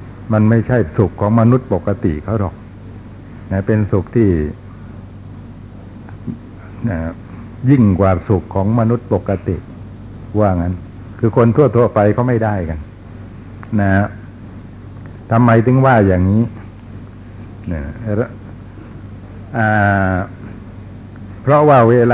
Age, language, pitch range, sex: 60-79, Thai, 100-120 Hz, male